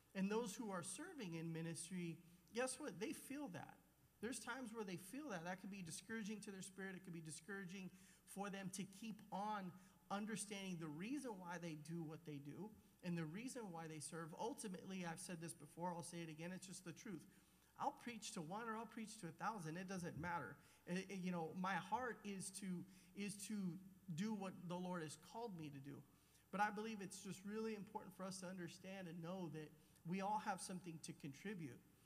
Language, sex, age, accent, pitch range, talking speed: English, male, 40-59, American, 170-205 Hz, 215 wpm